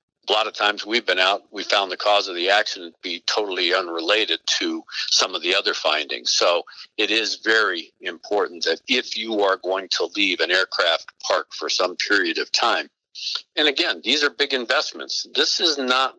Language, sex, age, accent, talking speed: English, male, 50-69, American, 195 wpm